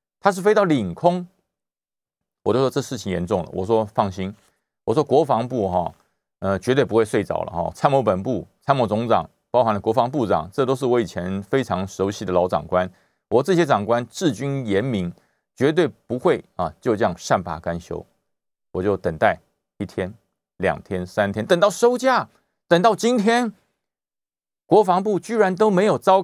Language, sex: Chinese, male